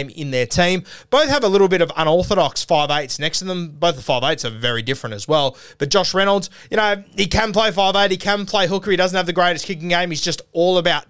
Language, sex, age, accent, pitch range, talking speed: English, male, 20-39, Australian, 135-180 Hz, 255 wpm